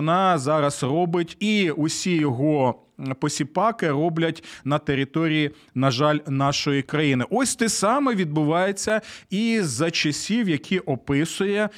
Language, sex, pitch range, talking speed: Ukrainian, male, 150-195 Hz, 115 wpm